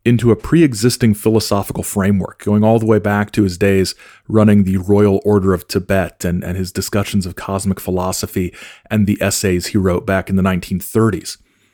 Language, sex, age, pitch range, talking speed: English, male, 40-59, 95-110 Hz, 180 wpm